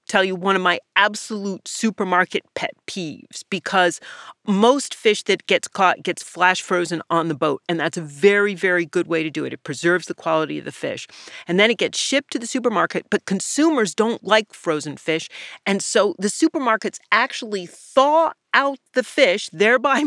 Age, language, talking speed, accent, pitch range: 40-59, English, 185 wpm, American, 175-240 Hz